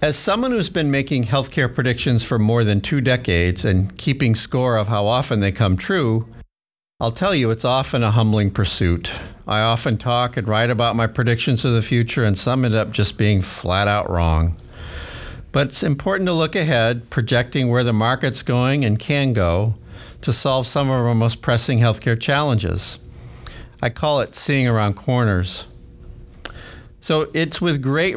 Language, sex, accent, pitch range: English, male, American, 105-135 Hz